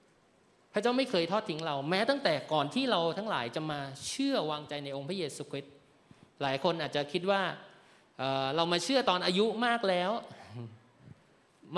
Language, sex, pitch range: Thai, male, 140-200 Hz